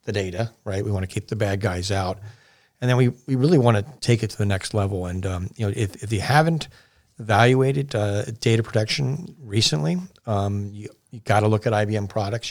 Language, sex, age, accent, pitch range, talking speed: English, male, 40-59, American, 100-120 Hz, 220 wpm